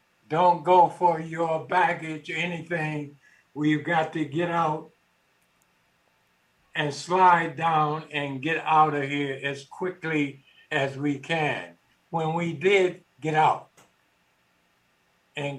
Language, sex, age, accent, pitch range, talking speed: English, male, 60-79, American, 145-170 Hz, 120 wpm